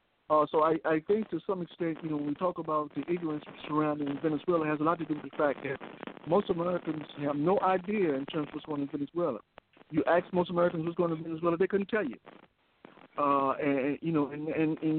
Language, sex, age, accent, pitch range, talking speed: English, male, 60-79, American, 145-175 Hz, 245 wpm